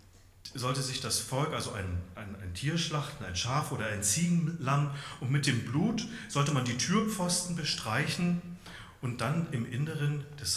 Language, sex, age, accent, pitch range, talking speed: German, male, 40-59, German, 95-145 Hz, 165 wpm